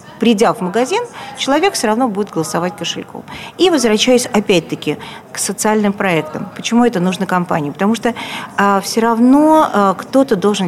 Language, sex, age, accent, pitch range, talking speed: Russian, female, 40-59, native, 185-235 Hz, 140 wpm